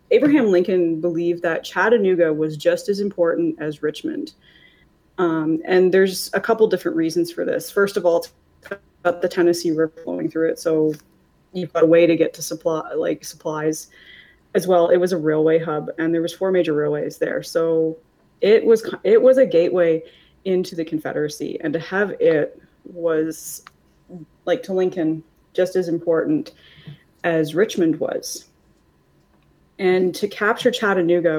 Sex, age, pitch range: female, 30-49, 155-185 Hz